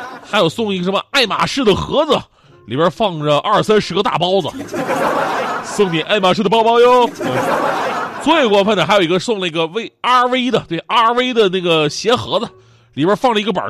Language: Chinese